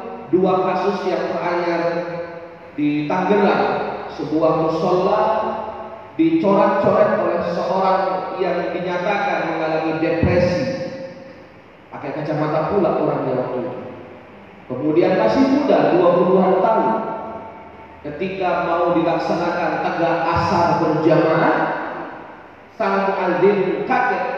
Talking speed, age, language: 85 wpm, 30-49, Indonesian